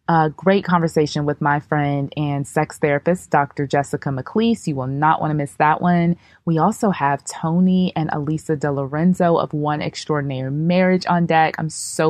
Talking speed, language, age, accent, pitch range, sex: 175 wpm, English, 20-39, American, 155-190 Hz, female